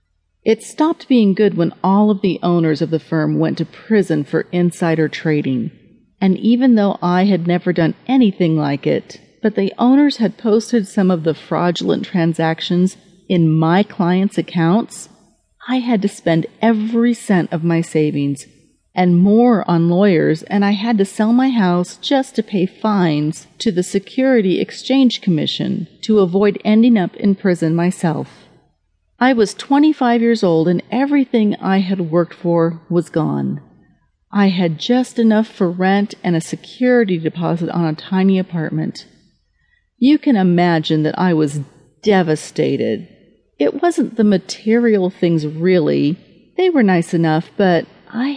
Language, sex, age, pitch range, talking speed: English, female, 40-59, 170-225 Hz, 155 wpm